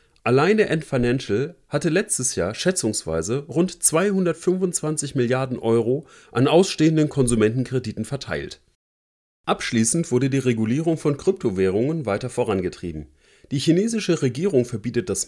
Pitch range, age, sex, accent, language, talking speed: 115-160 Hz, 40-59, male, German, German, 110 wpm